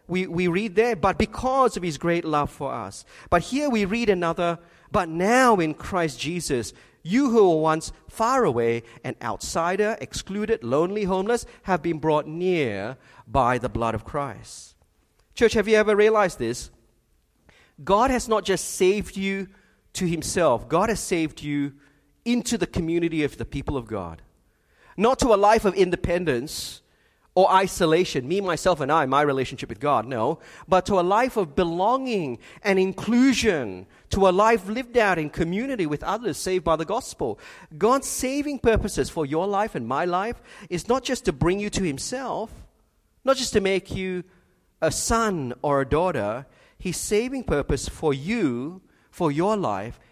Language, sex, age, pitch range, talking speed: English, male, 40-59, 145-210 Hz, 170 wpm